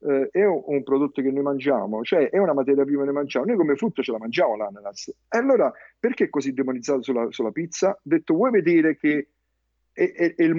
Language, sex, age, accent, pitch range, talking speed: Italian, male, 50-69, native, 140-180 Hz, 215 wpm